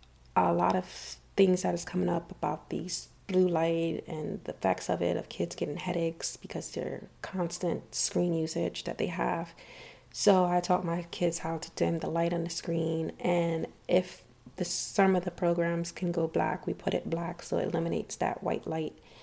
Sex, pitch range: female, 170-195 Hz